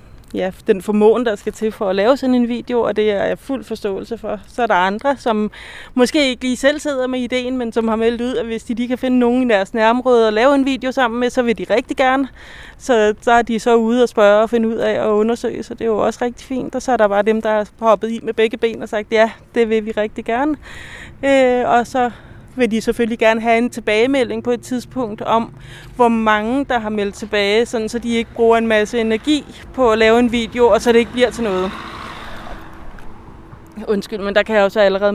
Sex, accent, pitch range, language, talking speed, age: female, native, 210-245 Hz, Danish, 250 wpm, 30-49